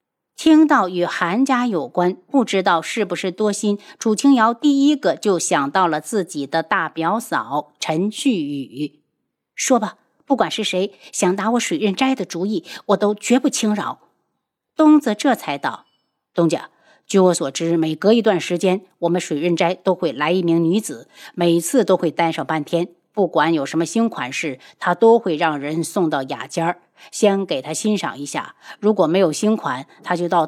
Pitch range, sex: 165-220 Hz, female